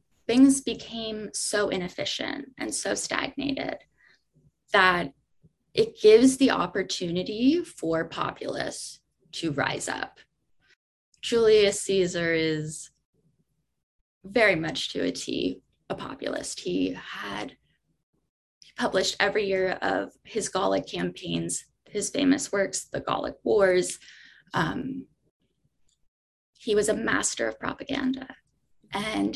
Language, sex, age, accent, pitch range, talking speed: English, female, 10-29, American, 190-275 Hz, 100 wpm